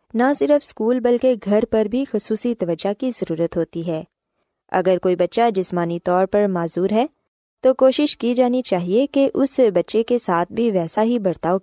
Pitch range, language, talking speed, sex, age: 180-245 Hz, Urdu, 180 wpm, female, 20-39